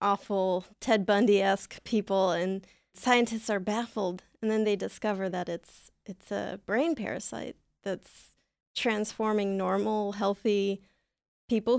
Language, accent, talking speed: English, American, 120 wpm